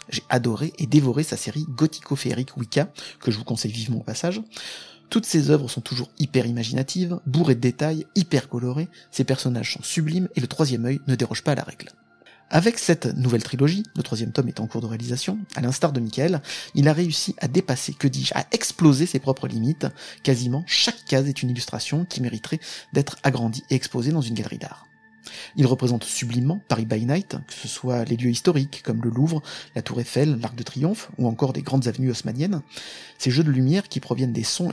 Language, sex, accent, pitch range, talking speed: French, male, French, 125-155 Hz, 205 wpm